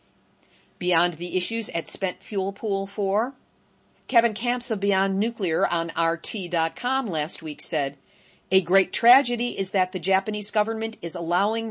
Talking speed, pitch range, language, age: 145 wpm, 170-220 Hz, English, 50-69